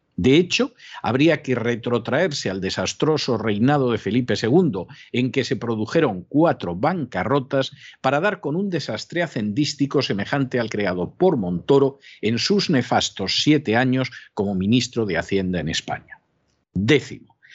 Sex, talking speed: male, 135 wpm